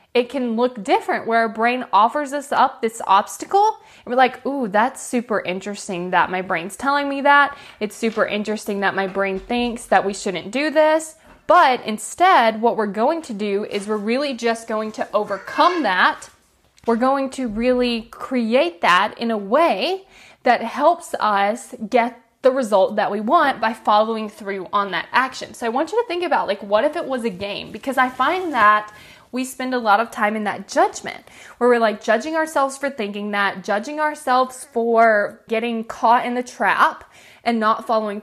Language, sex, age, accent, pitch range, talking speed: English, female, 20-39, American, 210-270 Hz, 190 wpm